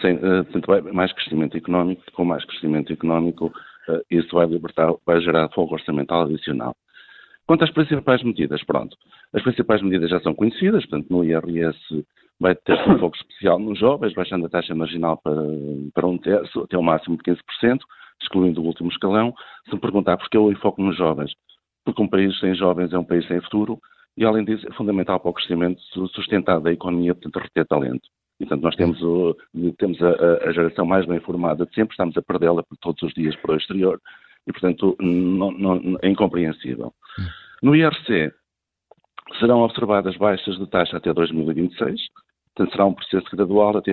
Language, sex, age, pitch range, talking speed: Portuguese, male, 50-69, 80-100 Hz, 175 wpm